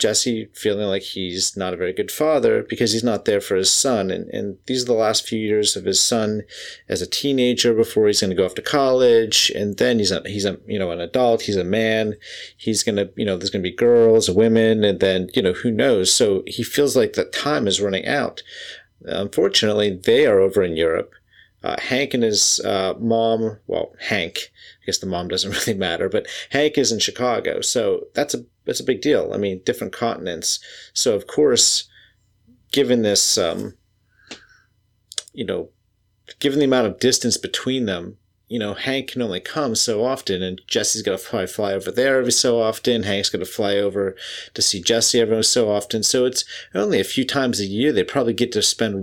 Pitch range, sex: 100-130 Hz, male